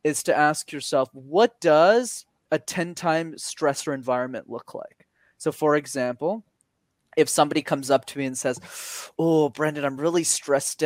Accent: American